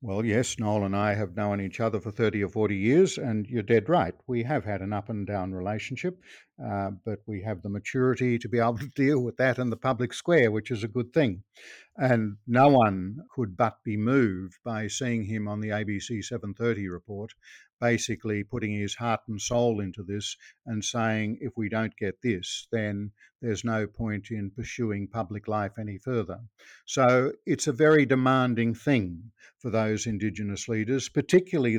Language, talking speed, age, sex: English, 185 wpm, 50-69, male